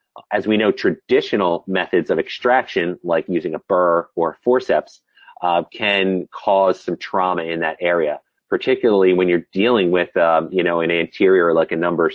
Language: English